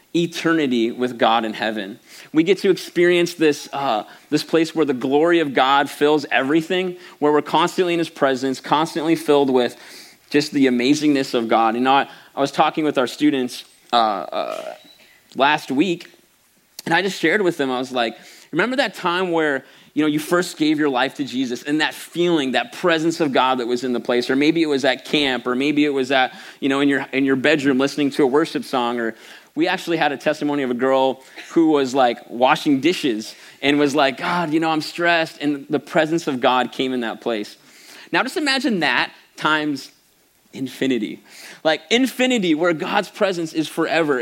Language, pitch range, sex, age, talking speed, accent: English, 130-165 Hz, male, 30-49, 200 wpm, American